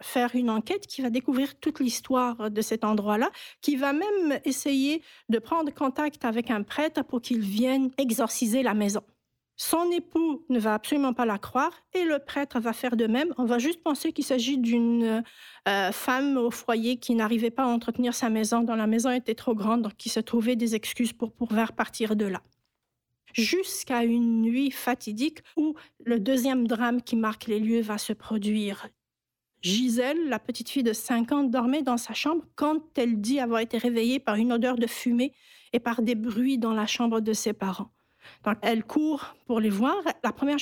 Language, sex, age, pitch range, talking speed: French, female, 50-69, 225-280 Hz, 195 wpm